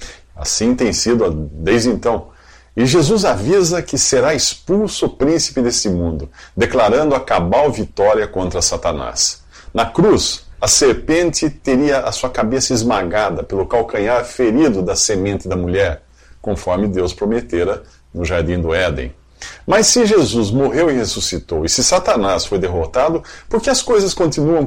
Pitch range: 85-130 Hz